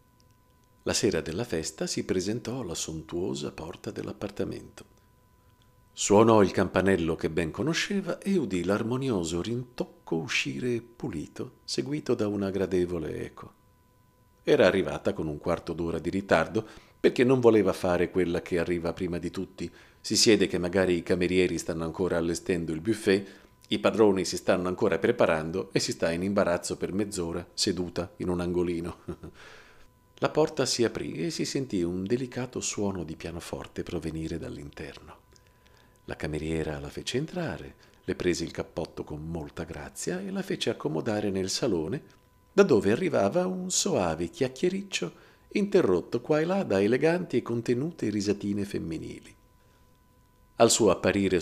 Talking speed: 145 wpm